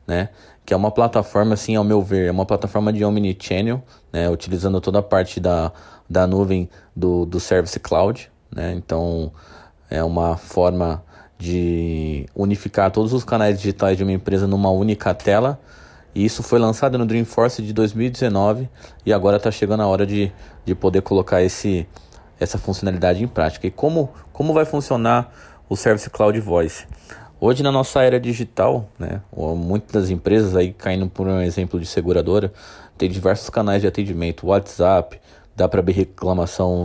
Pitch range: 90-110 Hz